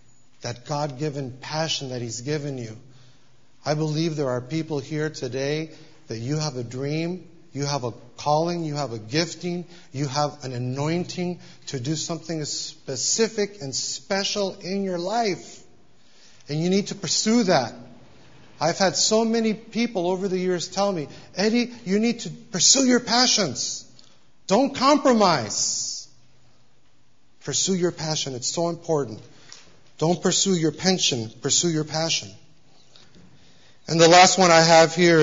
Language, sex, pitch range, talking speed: English, male, 130-175 Hz, 145 wpm